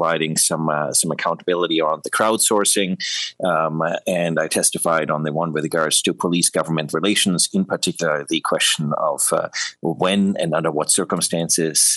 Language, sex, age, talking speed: English, male, 30-49, 155 wpm